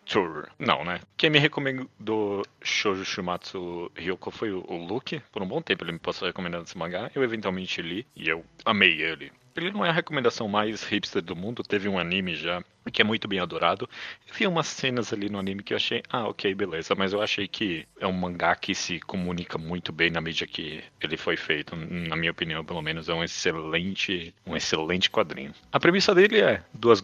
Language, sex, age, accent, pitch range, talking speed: Portuguese, male, 30-49, Brazilian, 90-105 Hz, 205 wpm